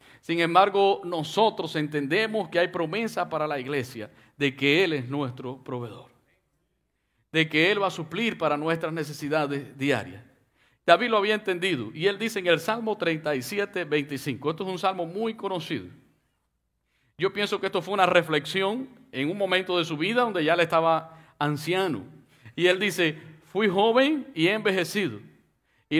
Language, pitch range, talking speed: English, 150-205 Hz, 165 wpm